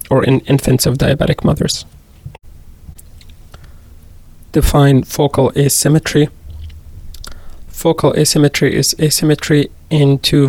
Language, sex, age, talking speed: English, male, 30-49, 85 wpm